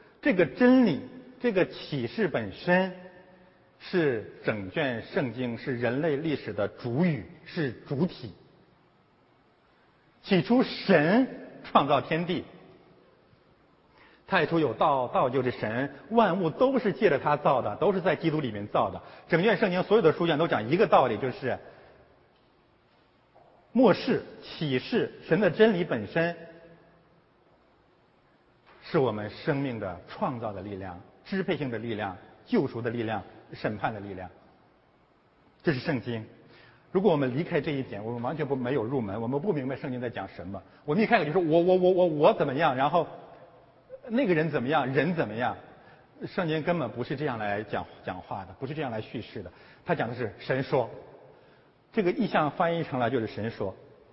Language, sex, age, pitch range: Chinese, male, 50-69, 120-185 Hz